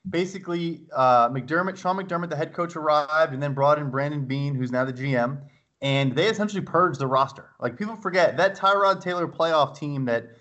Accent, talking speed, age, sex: American, 195 wpm, 20-39, male